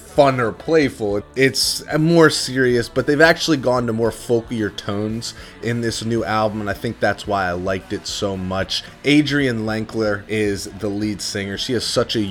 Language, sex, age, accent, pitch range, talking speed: English, male, 20-39, American, 95-115 Hz, 185 wpm